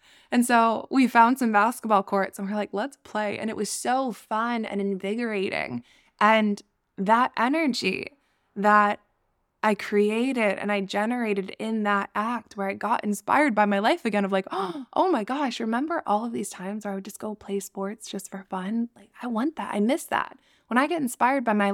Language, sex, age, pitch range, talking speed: English, female, 10-29, 195-230 Hz, 200 wpm